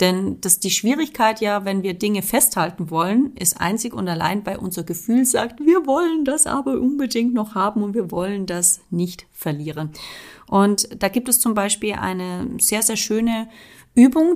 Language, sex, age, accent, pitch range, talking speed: German, female, 30-49, German, 175-230 Hz, 170 wpm